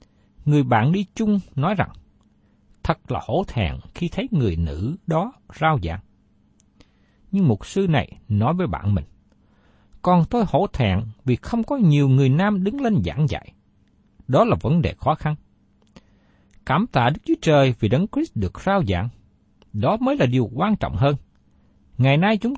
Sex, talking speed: male, 175 wpm